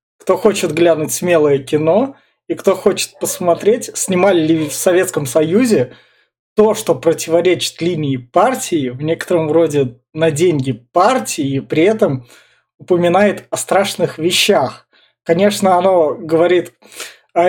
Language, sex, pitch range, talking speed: Russian, male, 160-195 Hz, 125 wpm